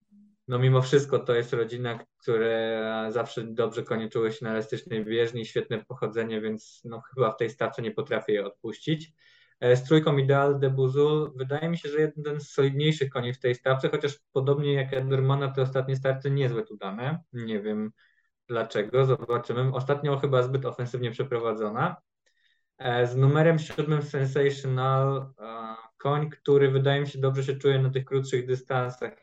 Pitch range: 125-145 Hz